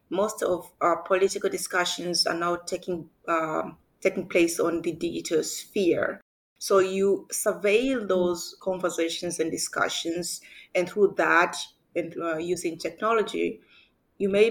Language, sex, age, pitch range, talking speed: English, female, 30-49, 170-200 Hz, 130 wpm